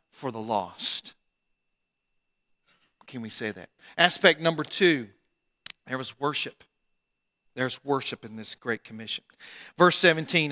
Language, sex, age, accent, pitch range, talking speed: English, male, 50-69, American, 160-215 Hz, 120 wpm